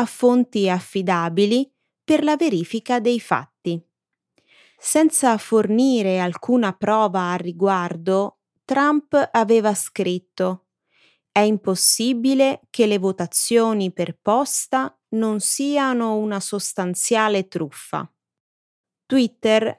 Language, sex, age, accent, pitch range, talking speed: Italian, female, 30-49, native, 190-245 Hz, 90 wpm